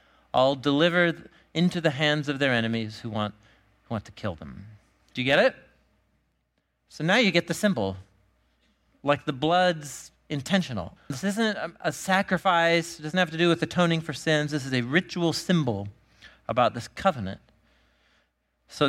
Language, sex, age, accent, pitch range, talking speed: English, male, 40-59, American, 130-170 Hz, 165 wpm